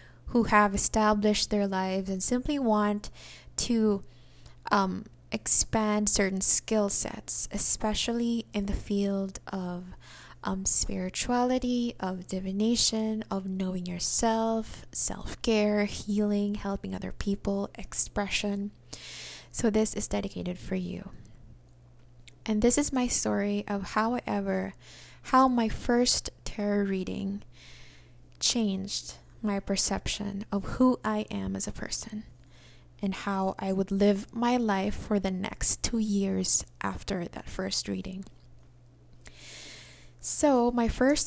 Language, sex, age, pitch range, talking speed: English, female, 20-39, 180-220 Hz, 115 wpm